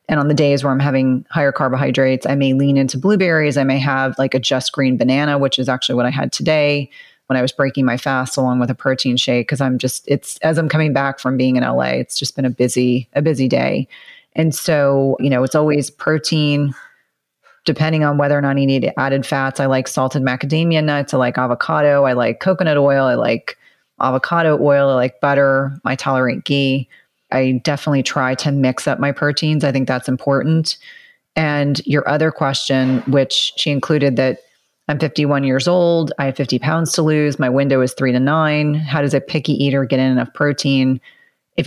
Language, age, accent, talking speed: English, 30-49, American, 205 wpm